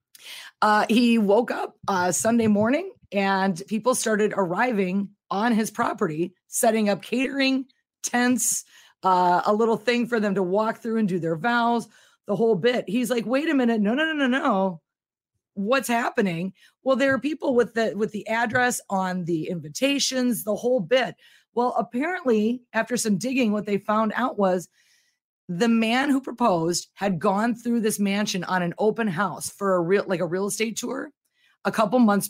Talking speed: 175 wpm